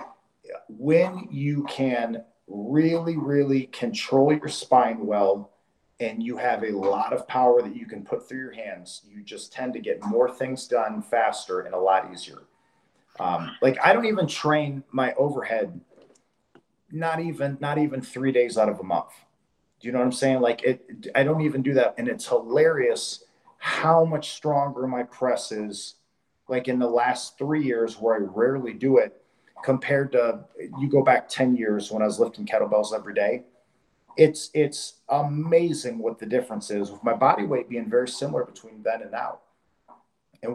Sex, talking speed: male, 180 wpm